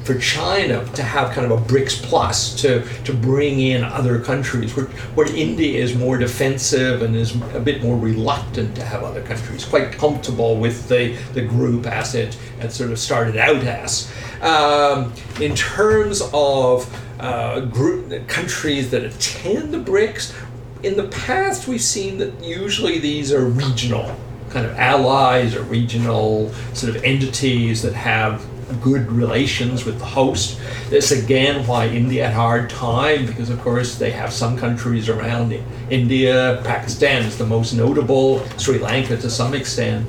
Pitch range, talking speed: 120-135 Hz, 165 wpm